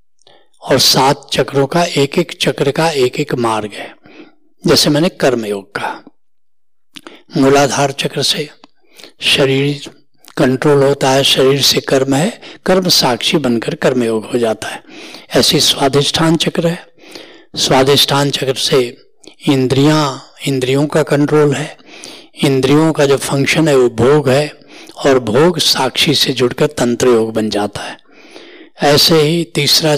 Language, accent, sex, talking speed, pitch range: Hindi, native, male, 135 wpm, 130-155 Hz